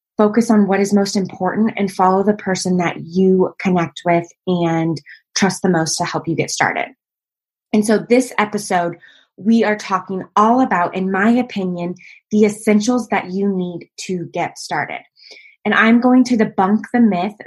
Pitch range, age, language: 185-235 Hz, 20-39, English